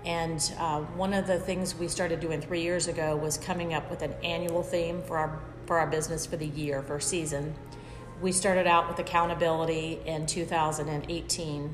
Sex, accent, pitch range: female, American, 150-175 Hz